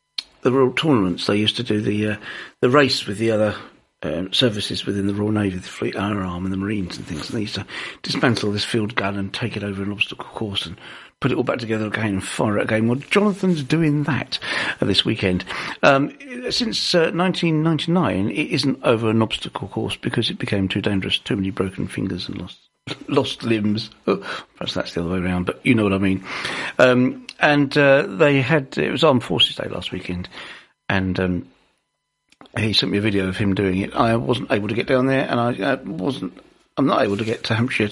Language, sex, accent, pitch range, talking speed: English, male, British, 100-145 Hz, 220 wpm